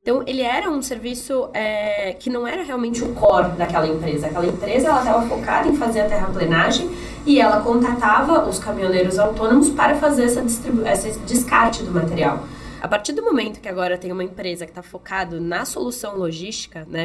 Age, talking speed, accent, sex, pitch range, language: 20-39, 185 wpm, Brazilian, female, 180-245 Hz, Portuguese